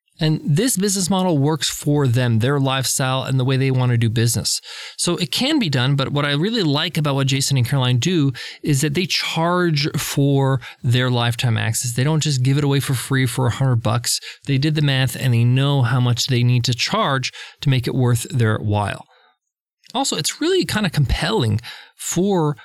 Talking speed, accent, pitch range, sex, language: 205 wpm, American, 130-175 Hz, male, English